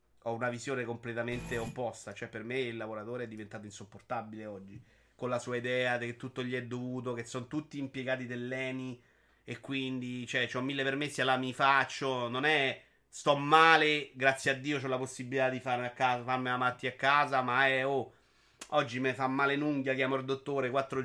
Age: 30-49